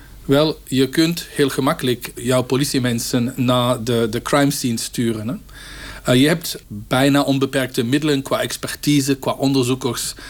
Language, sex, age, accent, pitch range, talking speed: Dutch, male, 50-69, Dutch, 125-150 Hz, 135 wpm